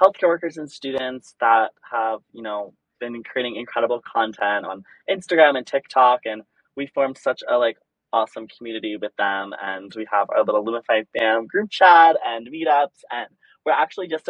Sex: male